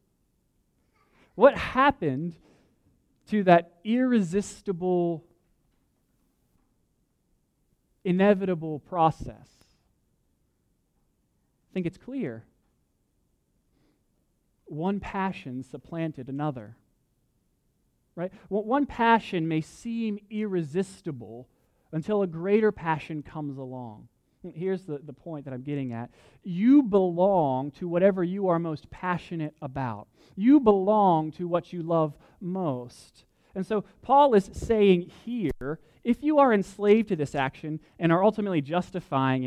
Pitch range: 155-205 Hz